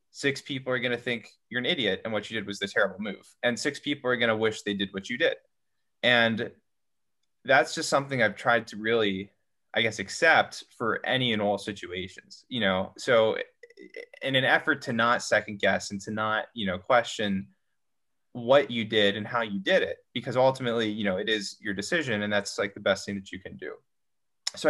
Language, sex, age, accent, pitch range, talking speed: English, male, 20-39, American, 100-140 Hz, 215 wpm